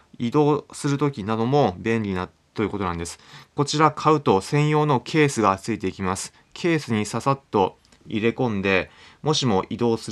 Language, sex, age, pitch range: Japanese, male, 20-39, 100-135 Hz